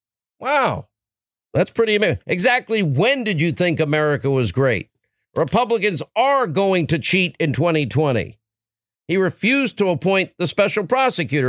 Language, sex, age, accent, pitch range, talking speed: English, male, 50-69, American, 155-200 Hz, 135 wpm